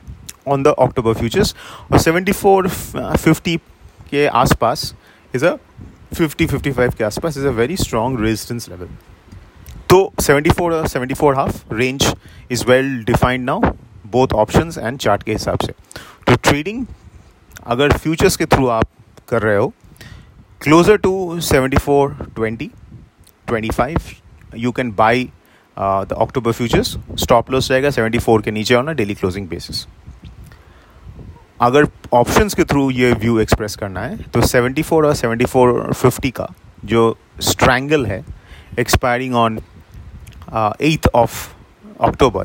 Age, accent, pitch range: 30-49, Indian, 105-140 Hz